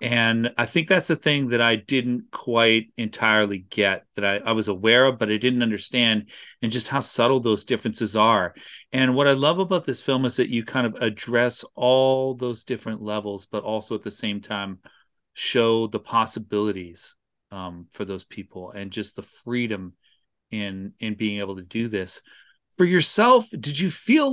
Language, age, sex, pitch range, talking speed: English, 40-59, male, 105-135 Hz, 185 wpm